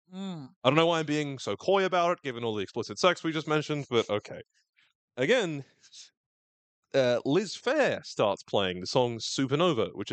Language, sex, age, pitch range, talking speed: English, male, 30-49, 105-130 Hz, 180 wpm